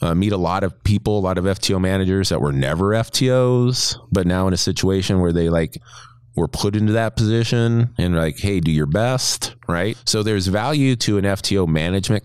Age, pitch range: 30-49, 85-115 Hz